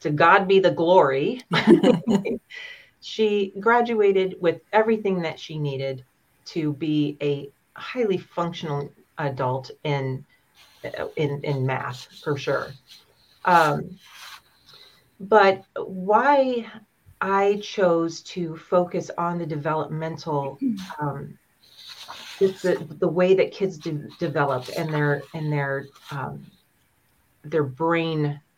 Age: 40-59